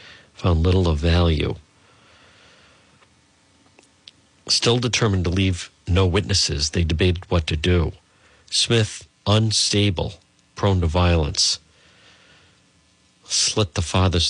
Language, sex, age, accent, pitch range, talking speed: English, male, 50-69, American, 85-115 Hz, 95 wpm